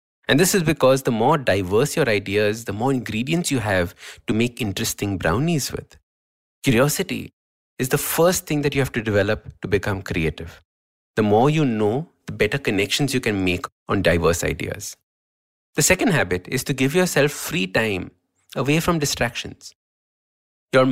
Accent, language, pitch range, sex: Indian, English, 90-135 Hz, male